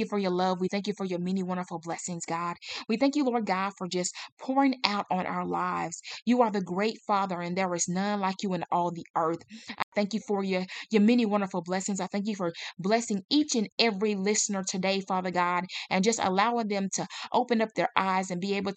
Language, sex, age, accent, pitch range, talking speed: English, female, 20-39, American, 180-210 Hz, 230 wpm